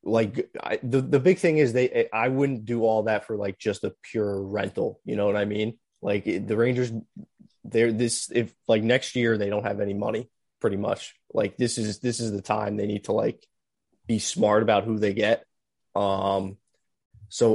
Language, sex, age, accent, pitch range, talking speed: English, male, 20-39, American, 105-120 Hz, 200 wpm